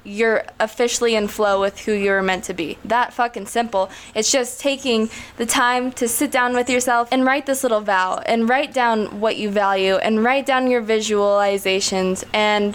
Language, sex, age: English, female, 20-39